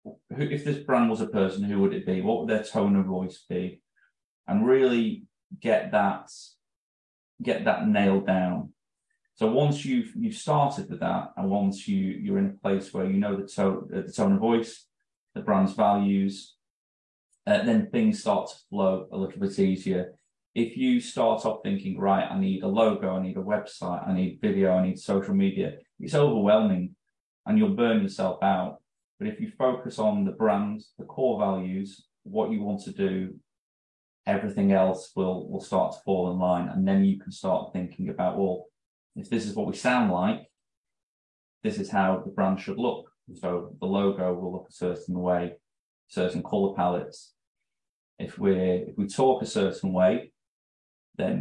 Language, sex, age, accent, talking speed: English, male, 30-49, British, 180 wpm